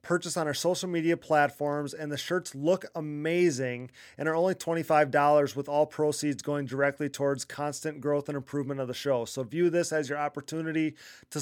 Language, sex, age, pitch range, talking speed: English, male, 30-49, 145-170 Hz, 185 wpm